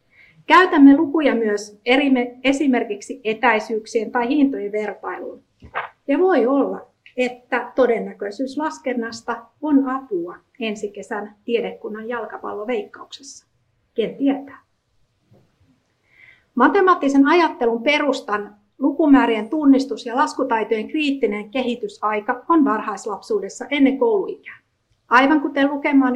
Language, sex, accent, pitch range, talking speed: Finnish, female, native, 225-275 Hz, 90 wpm